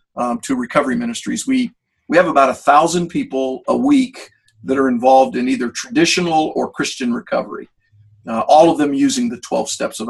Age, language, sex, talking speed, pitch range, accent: 50-69, English, male, 185 wpm, 135-180 Hz, American